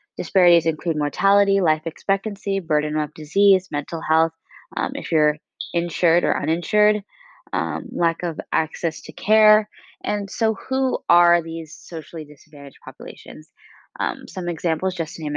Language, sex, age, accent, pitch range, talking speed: English, female, 20-39, American, 155-190 Hz, 140 wpm